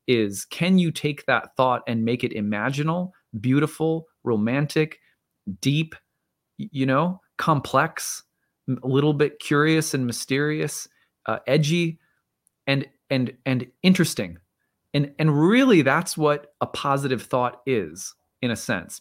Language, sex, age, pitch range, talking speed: English, male, 30-49, 110-155 Hz, 125 wpm